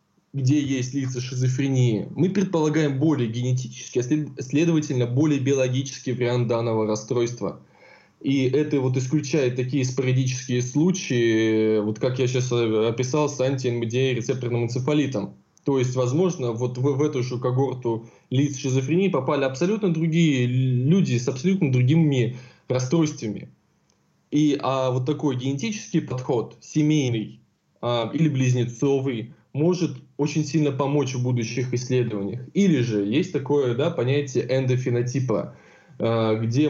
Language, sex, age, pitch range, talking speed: Russian, male, 20-39, 120-145 Hz, 125 wpm